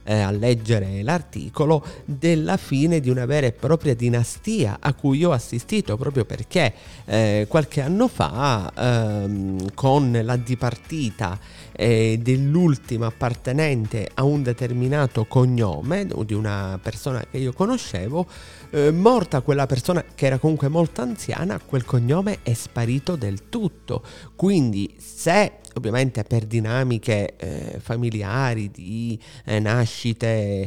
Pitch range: 115-140 Hz